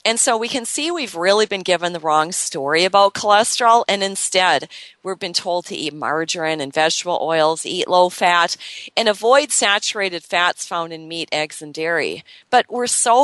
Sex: female